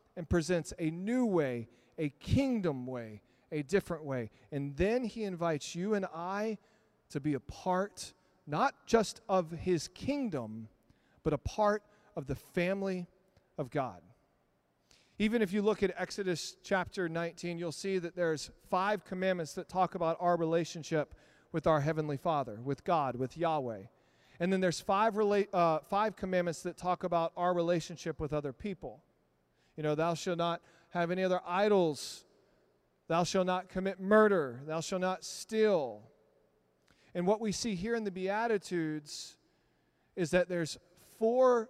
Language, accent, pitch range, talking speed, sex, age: English, American, 150-190 Hz, 155 wpm, male, 40-59